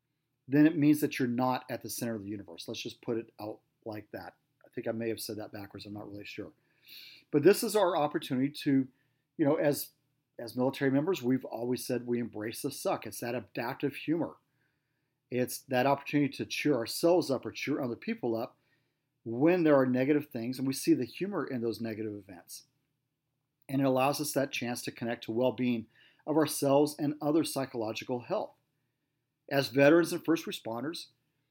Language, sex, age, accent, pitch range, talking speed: English, male, 40-59, American, 125-150 Hz, 190 wpm